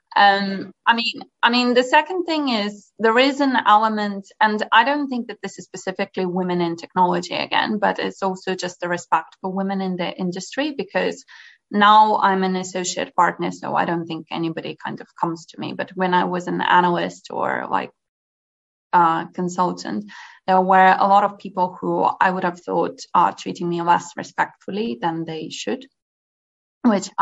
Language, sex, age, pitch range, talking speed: English, female, 20-39, 175-215 Hz, 180 wpm